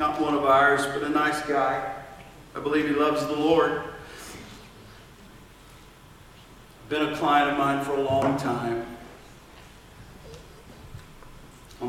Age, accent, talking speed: 50-69, American, 120 wpm